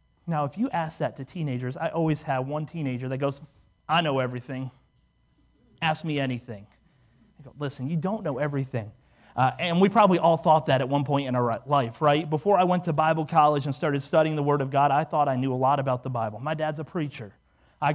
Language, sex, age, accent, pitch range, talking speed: English, male, 30-49, American, 140-185 Hz, 225 wpm